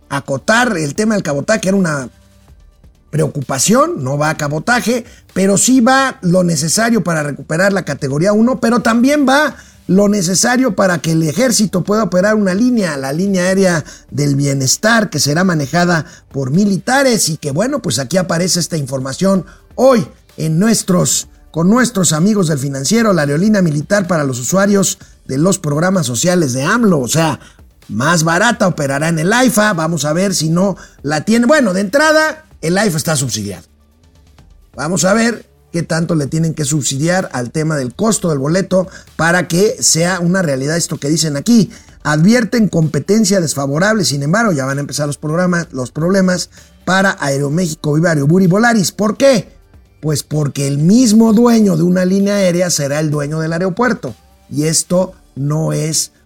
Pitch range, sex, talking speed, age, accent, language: 145-200 Hz, male, 165 wpm, 50-69, Mexican, Spanish